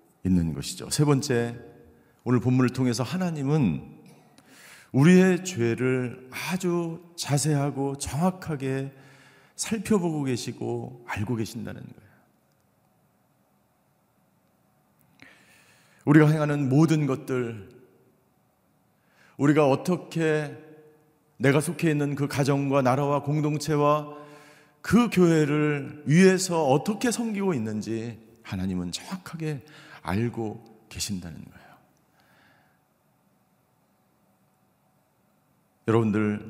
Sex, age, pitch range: male, 40-59, 120-165 Hz